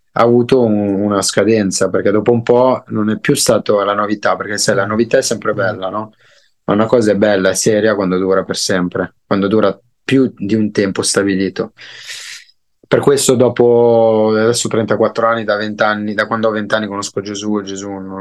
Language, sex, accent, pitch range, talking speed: Italian, male, native, 95-110 Hz, 190 wpm